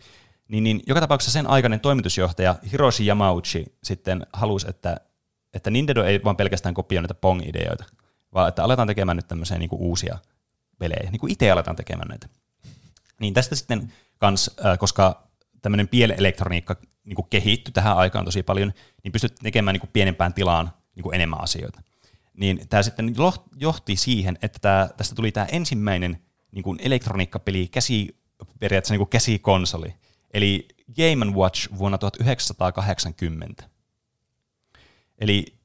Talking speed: 145 wpm